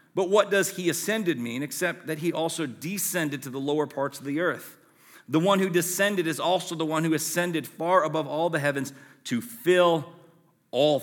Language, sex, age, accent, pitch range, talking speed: English, male, 40-59, American, 145-185 Hz, 195 wpm